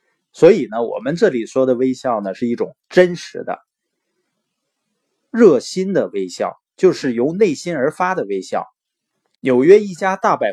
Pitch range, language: 130-205 Hz, Chinese